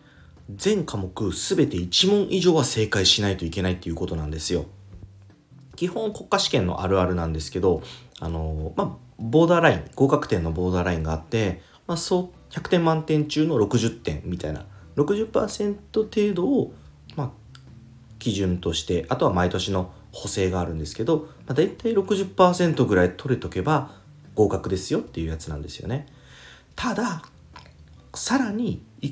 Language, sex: Japanese, male